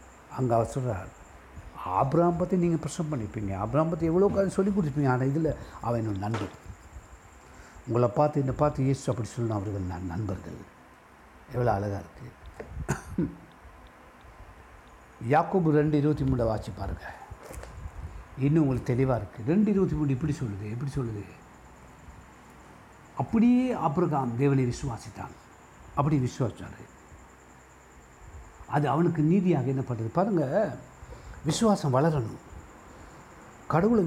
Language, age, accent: Tamil, 60-79, native